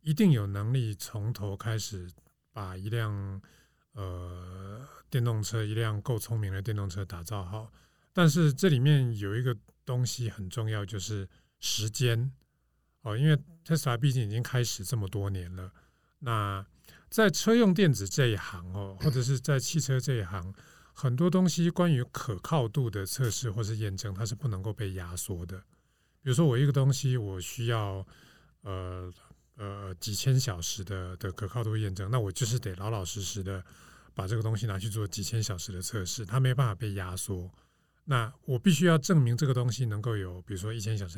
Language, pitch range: Chinese, 100-125 Hz